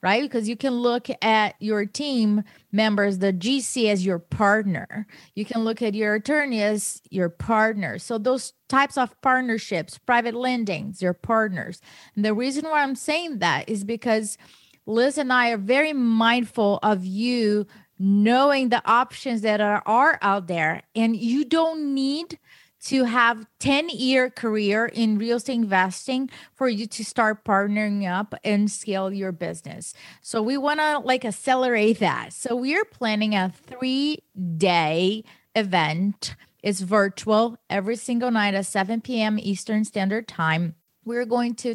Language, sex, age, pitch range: English, female, 30-49, 195-245 Hz